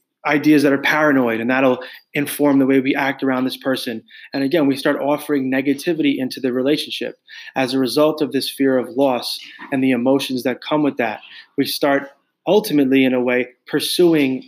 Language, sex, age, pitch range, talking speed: English, male, 20-39, 125-145 Hz, 185 wpm